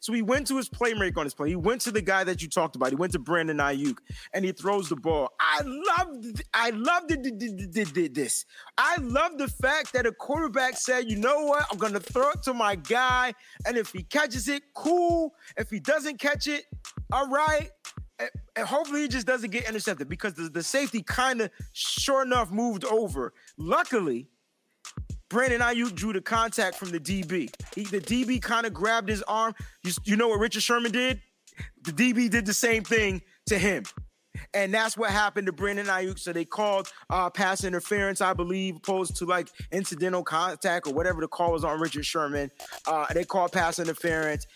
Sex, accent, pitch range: male, American, 180-255 Hz